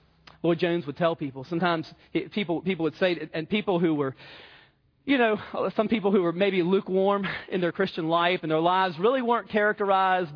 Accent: American